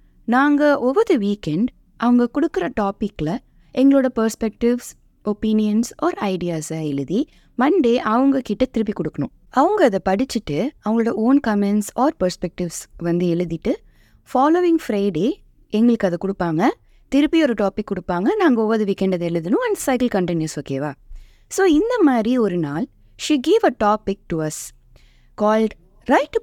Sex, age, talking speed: female, 20-39, 130 wpm